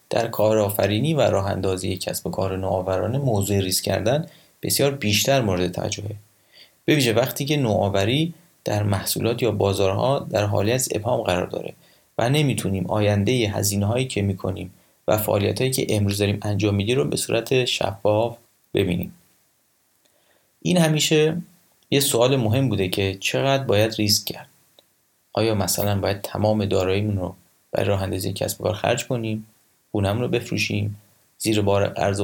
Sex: male